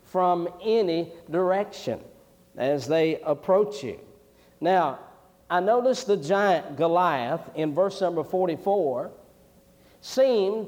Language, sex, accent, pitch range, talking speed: English, male, American, 165-195 Hz, 100 wpm